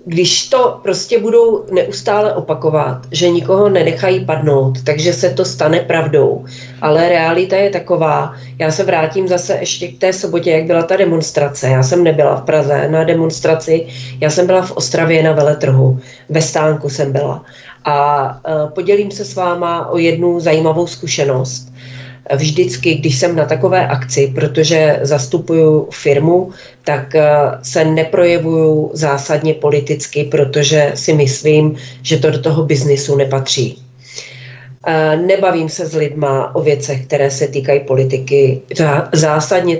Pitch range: 140-175 Hz